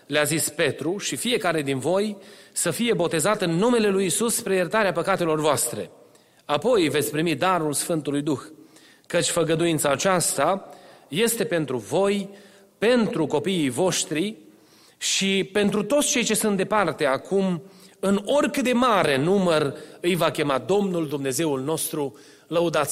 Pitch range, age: 165-230 Hz, 30-49